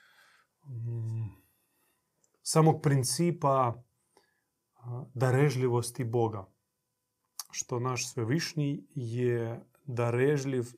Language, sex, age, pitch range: Croatian, male, 30-49, 115-130 Hz